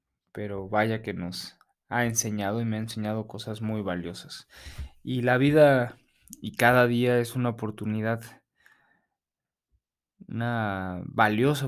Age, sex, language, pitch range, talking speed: 20-39, male, Spanish, 100-120 Hz, 125 wpm